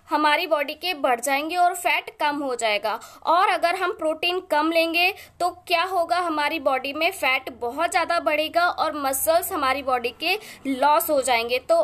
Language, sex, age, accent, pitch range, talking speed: Hindi, female, 20-39, native, 285-340 Hz, 175 wpm